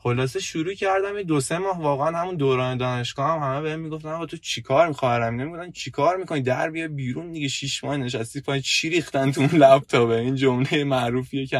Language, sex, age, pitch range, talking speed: Persian, male, 20-39, 105-140 Hz, 195 wpm